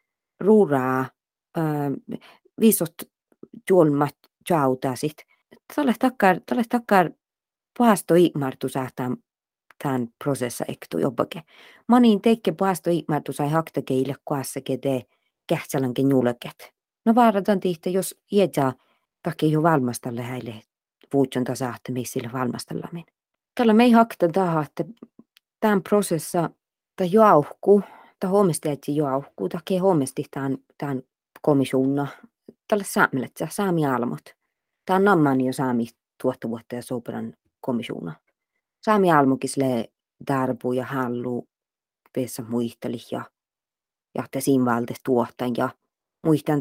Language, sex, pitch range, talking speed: Finnish, female, 130-190 Hz, 90 wpm